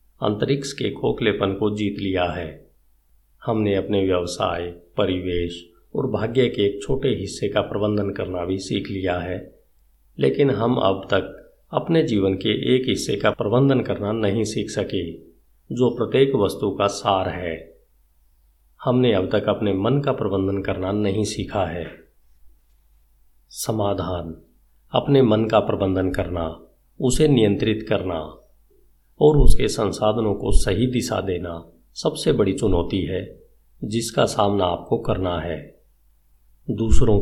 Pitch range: 85-105 Hz